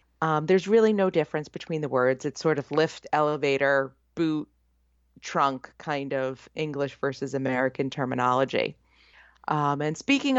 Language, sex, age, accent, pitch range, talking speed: English, female, 40-59, American, 135-175 Hz, 140 wpm